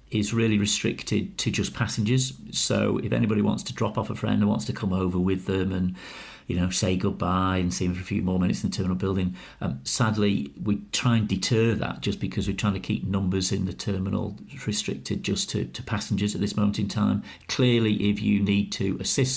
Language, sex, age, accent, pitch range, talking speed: English, male, 40-59, British, 95-115 Hz, 225 wpm